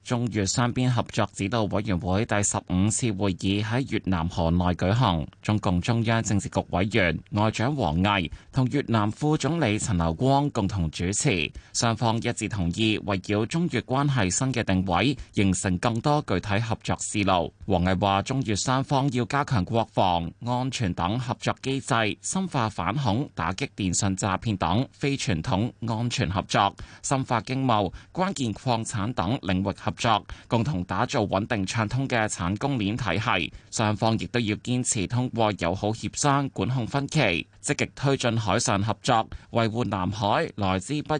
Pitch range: 95-125 Hz